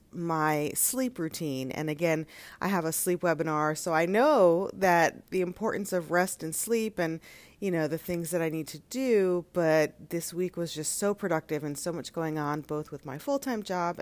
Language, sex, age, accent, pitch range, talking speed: English, female, 30-49, American, 160-205 Hz, 205 wpm